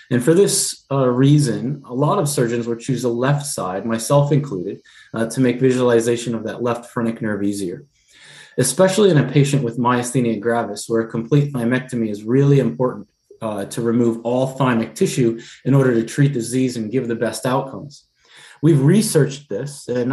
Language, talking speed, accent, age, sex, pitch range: English, 180 wpm, American, 30-49, male, 120-145 Hz